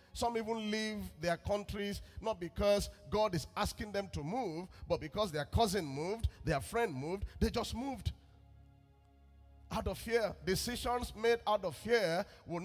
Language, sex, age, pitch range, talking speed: English, male, 40-59, 130-185 Hz, 155 wpm